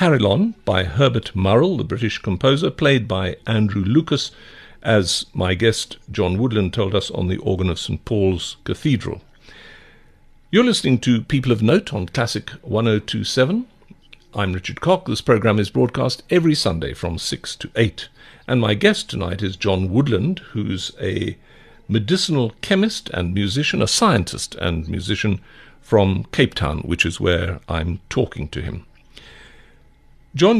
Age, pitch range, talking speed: 60-79, 100-145 Hz, 145 wpm